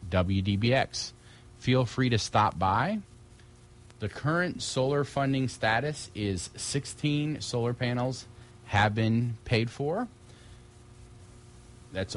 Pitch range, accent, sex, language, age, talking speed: 100-120 Hz, American, male, English, 30-49, 100 wpm